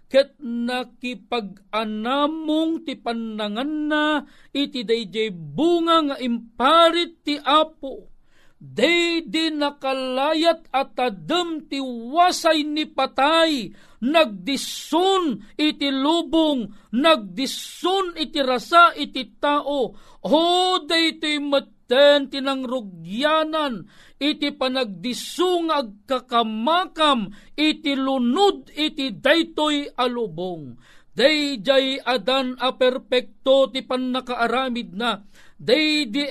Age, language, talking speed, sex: 50-69, Filipino, 85 wpm, male